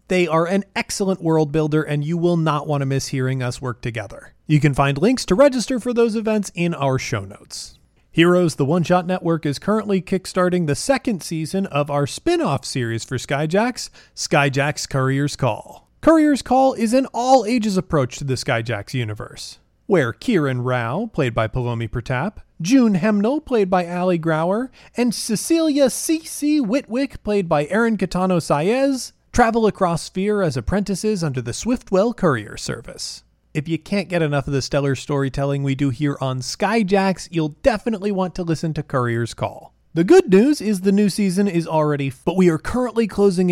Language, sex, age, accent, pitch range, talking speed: English, male, 30-49, American, 140-215 Hz, 180 wpm